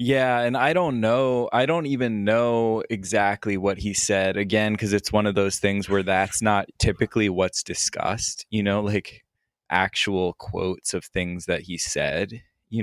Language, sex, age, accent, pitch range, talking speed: English, male, 20-39, American, 95-110 Hz, 175 wpm